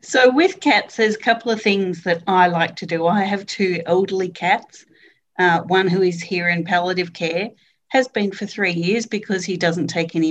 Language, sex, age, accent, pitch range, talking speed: English, female, 40-59, Australian, 170-210 Hz, 210 wpm